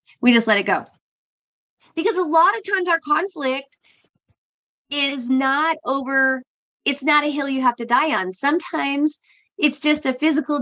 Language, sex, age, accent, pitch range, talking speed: English, female, 30-49, American, 220-280 Hz, 165 wpm